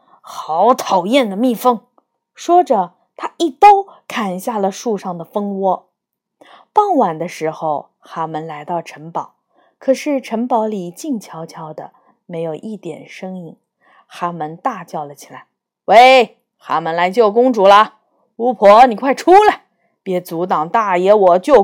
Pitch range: 180-265 Hz